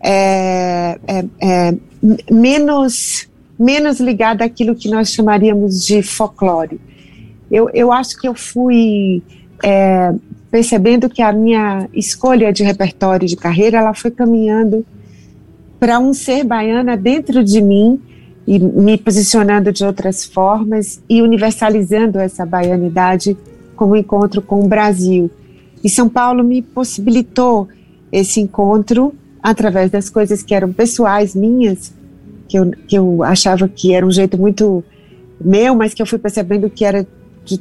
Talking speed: 140 wpm